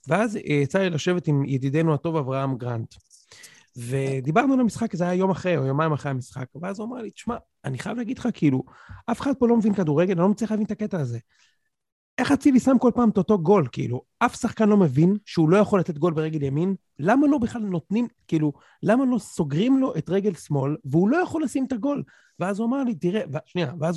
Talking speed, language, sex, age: 210 wpm, Hebrew, male, 40-59